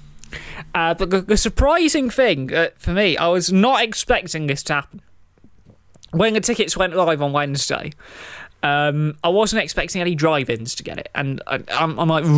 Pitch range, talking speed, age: 135-175 Hz, 180 wpm, 20-39